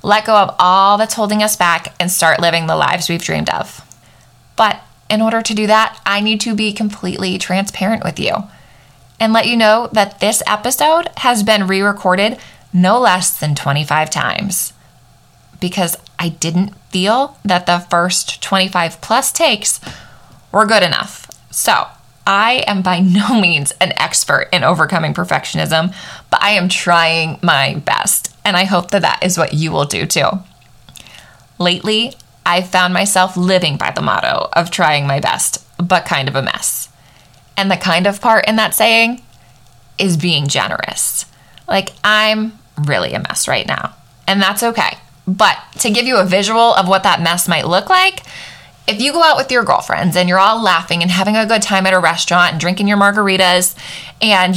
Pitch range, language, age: 170-210 Hz, English, 20-39